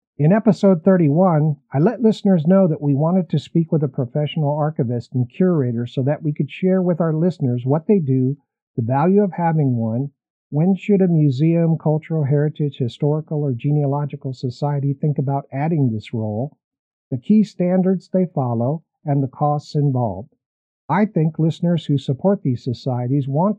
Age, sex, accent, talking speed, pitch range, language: 50-69, male, American, 170 wpm, 135-170 Hz, English